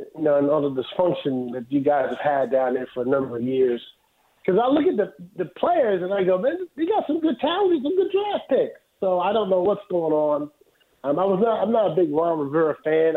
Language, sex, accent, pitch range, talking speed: English, male, American, 145-195 Hz, 255 wpm